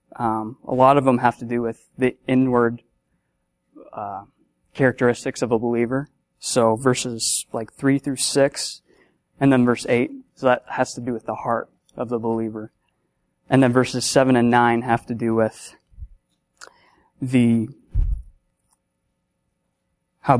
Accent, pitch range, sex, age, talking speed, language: American, 110-130 Hz, male, 20-39, 145 wpm, English